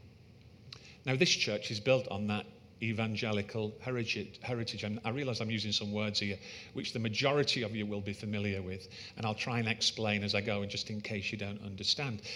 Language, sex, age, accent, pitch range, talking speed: English, male, 40-59, British, 105-125 Hz, 200 wpm